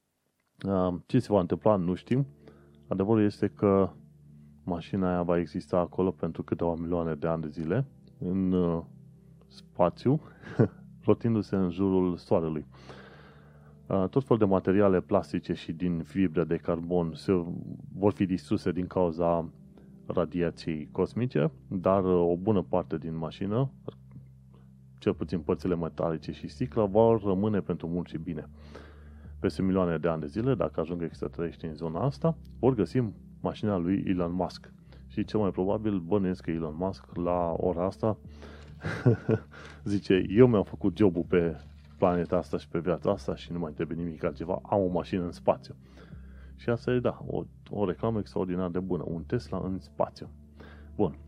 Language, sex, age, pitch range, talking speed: Romanian, male, 30-49, 80-100 Hz, 150 wpm